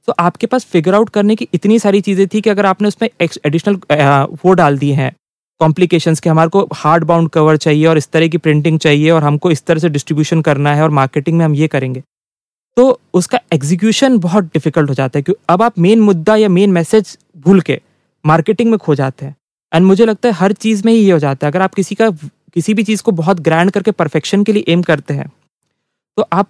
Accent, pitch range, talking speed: Indian, 155-200 Hz, 180 wpm